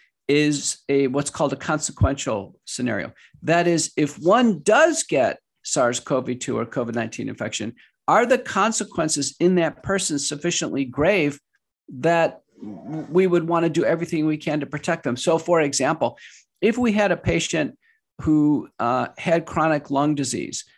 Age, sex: 50-69, male